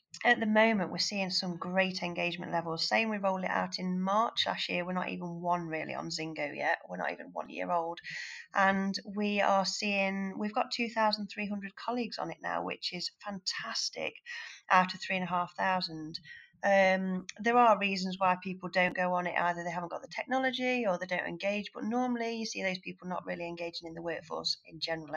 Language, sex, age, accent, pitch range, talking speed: English, female, 30-49, British, 175-225 Hz, 215 wpm